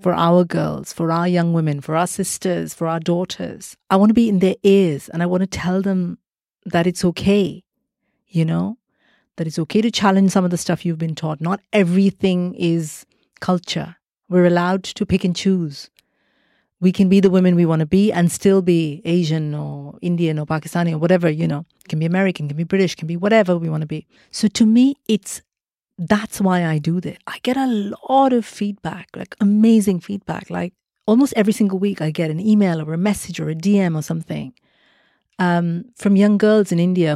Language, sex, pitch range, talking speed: English, female, 165-195 Hz, 205 wpm